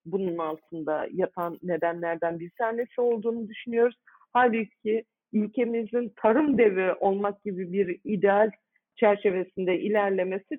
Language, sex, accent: Turkish, female, native